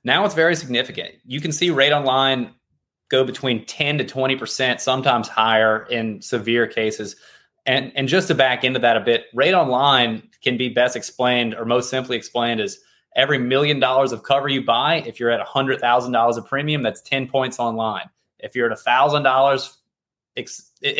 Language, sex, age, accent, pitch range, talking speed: English, male, 20-39, American, 120-145 Hz, 170 wpm